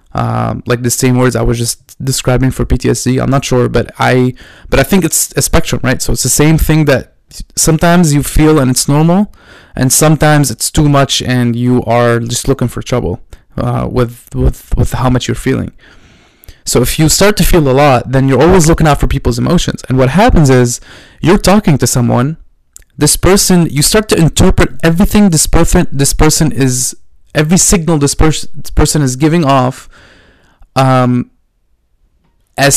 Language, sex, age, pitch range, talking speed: English, male, 20-39, 125-155 Hz, 185 wpm